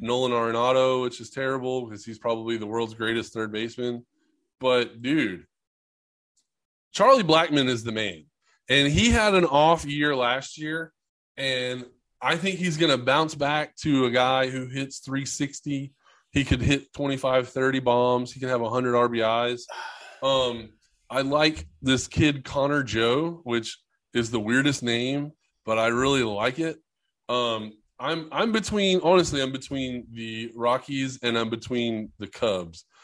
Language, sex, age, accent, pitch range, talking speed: English, male, 20-39, American, 115-140 Hz, 150 wpm